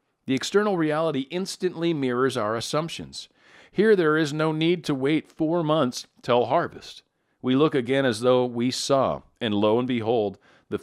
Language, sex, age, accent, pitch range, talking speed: English, male, 40-59, American, 120-155 Hz, 165 wpm